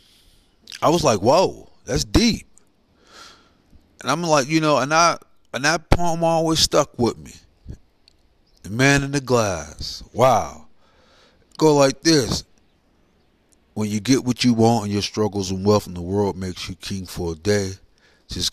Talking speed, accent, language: 160 wpm, American, English